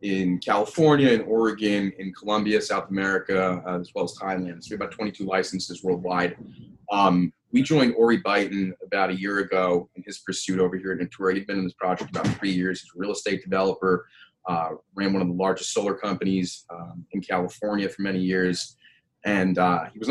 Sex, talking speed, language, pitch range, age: male, 195 wpm, English, 90-105 Hz, 30-49